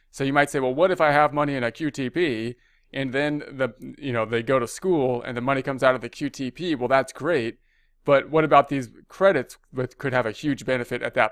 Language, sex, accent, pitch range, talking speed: English, male, American, 115-135 Hz, 245 wpm